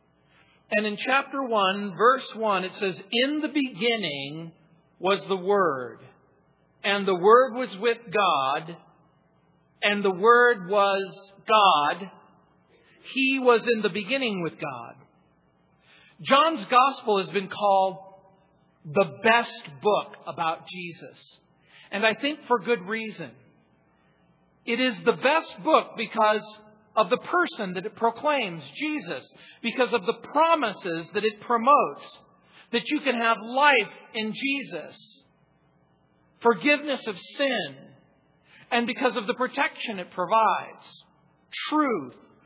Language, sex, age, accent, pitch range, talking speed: English, male, 50-69, American, 190-250 Hz, 120 wpm